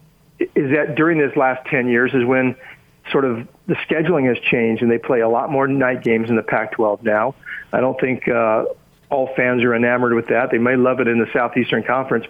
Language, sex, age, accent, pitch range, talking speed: English, male, 50-69, American, 125-150 Hz, 220 wpm